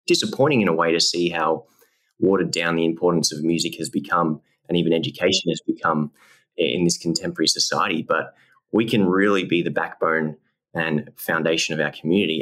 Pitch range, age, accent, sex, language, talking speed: 80-95 Hz, 20-39, Australian, male, English, 175 wpm